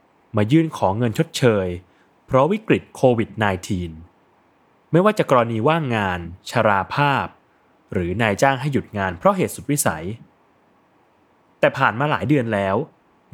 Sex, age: male, 20-39